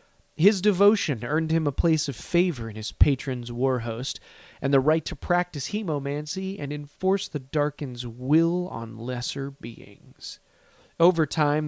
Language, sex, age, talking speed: English, male, 30-49, 150 wpm